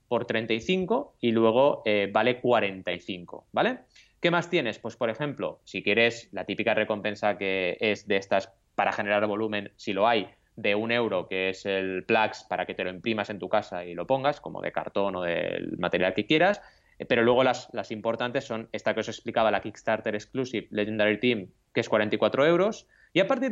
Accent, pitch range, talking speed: Spanish, 105-140 Hz, 195 wpm